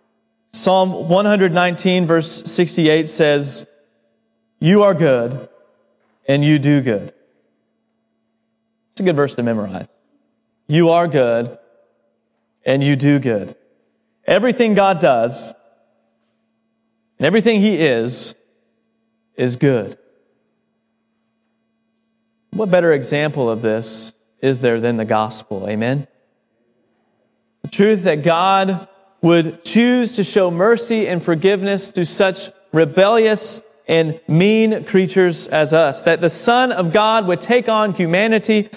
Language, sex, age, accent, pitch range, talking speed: English, male, 30-49, American, 140-220 Hz, 115 wpm